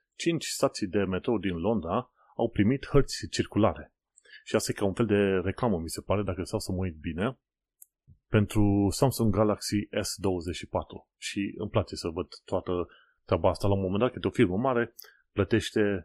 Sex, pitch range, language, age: male, 90-120 Hz, Romanian, 30-49